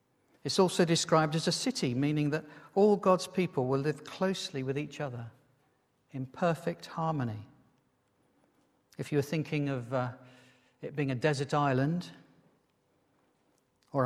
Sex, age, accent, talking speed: male, 50-69, British, 130 wpm